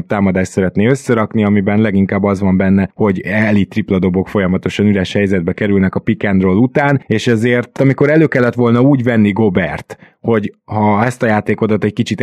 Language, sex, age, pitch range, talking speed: Hungarian, male, 20-39, 100-125 Hz, 165 wpm